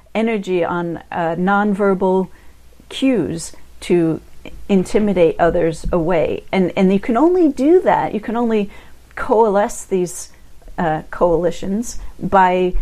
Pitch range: 165-200 Hz